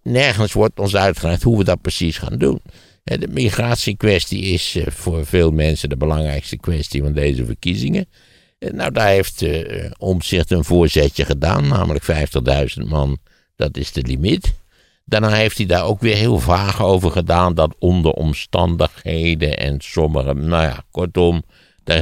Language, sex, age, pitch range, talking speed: Dutch, male, 60-79, 75-95 Hz, 155 wpm